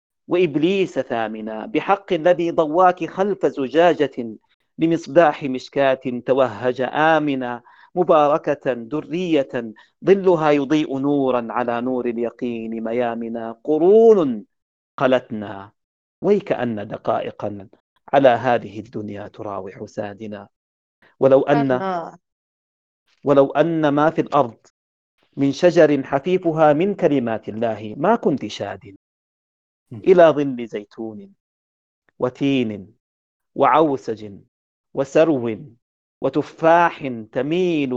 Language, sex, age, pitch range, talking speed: Arabic, male, 40-59, 115-160 Hz, 85 wpm